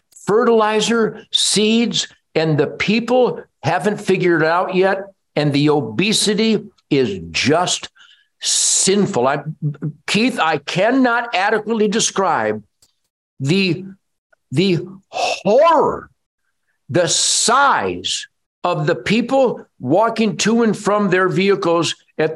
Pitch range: 170-235 Hz